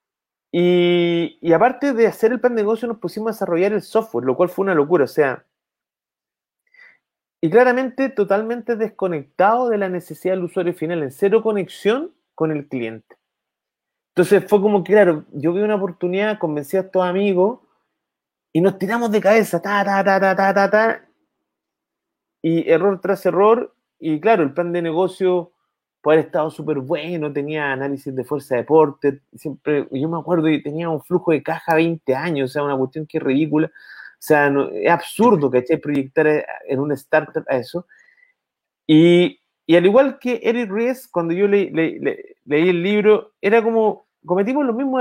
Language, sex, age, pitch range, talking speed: Spanish, male, 30-49, 155-215 Hz, 185 wpm